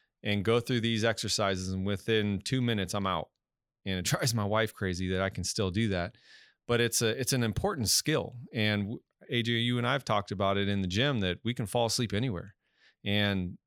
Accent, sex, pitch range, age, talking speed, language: American, male, 100-125 Hz, 30-49, 210 wpm, English